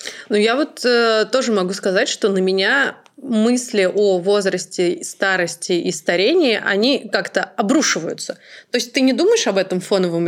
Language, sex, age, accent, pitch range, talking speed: Russian, female, 20-39, native, 195-265 Hz, 160 wpm